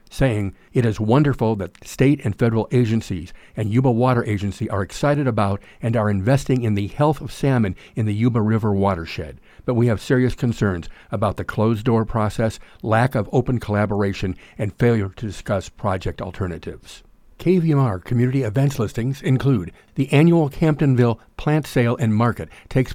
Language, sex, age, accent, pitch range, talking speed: English, male, 50-69, American, 105-135 Hz, 160 wpm